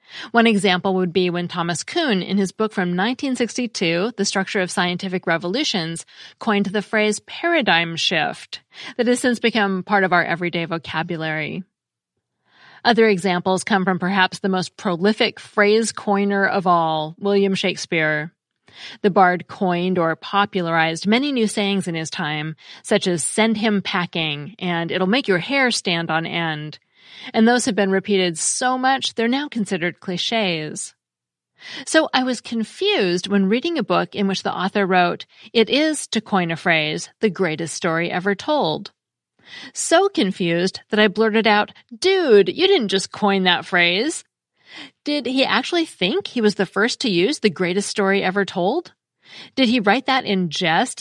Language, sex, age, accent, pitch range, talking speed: English, female, 30-49, American, 180-230 Hz, 160 wpm